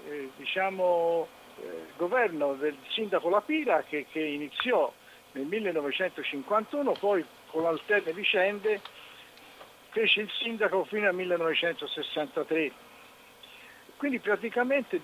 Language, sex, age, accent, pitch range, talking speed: Italian, male, 50-69, native, 160-255 Hz, 95 wpm